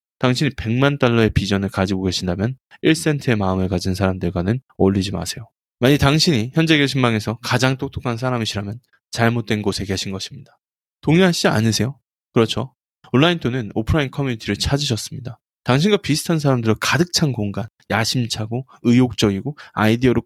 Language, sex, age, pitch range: Korean, male, 20-39, 105-140 Hz